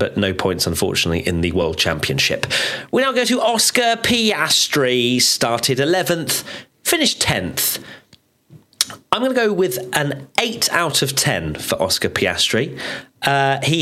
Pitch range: 115-155 Hz